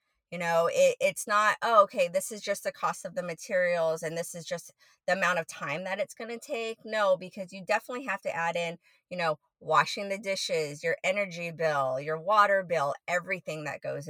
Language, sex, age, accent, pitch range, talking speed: English, female, 30-49, American, 165-215 Hz, 215 wpm